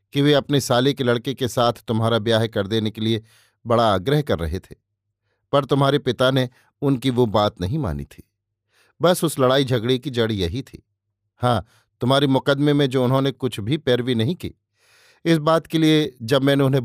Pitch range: 105-140 Hz